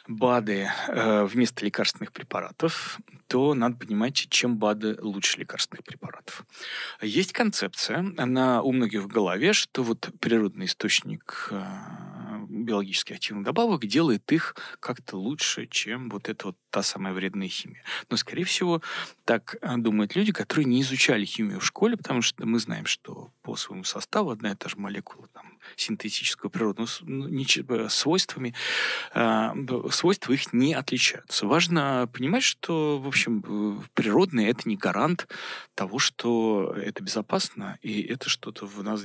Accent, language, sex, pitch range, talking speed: native, Russian, male, 105-155 Hz, 140 wpm